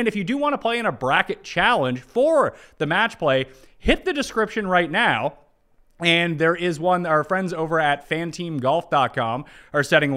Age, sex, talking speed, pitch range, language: 30-49, male, 185 wpm, 135-190 Hz, English